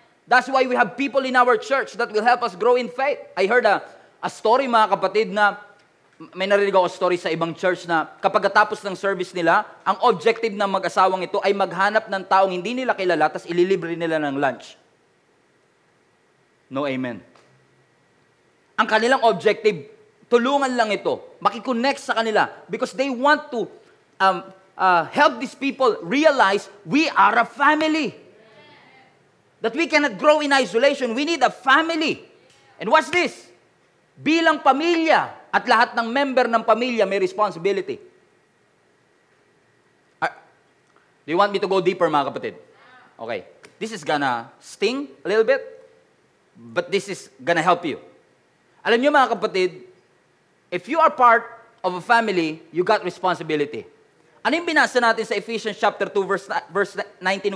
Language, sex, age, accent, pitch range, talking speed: English, male, 20-39, Filipino, 190-275 Hz, 155 wpm